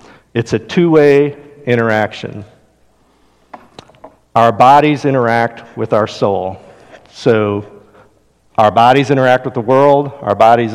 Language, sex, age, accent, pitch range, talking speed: English, male, 50-69, American, 110-140 Hz, 105 wpm